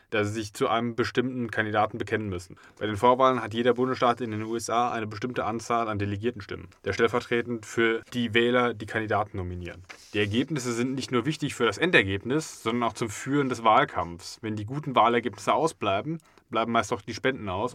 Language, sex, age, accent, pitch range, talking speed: German, male, 20-39, German, 110-125 Hz, 195 wpm